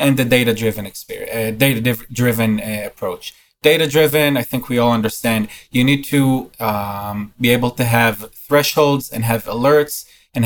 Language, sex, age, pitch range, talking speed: English, male, 20-39, 110-130 Hz, 170 wpm